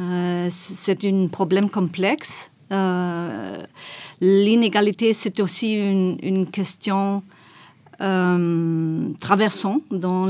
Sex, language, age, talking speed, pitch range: female, French, 50-69, 85 wpm, 180-210 Hz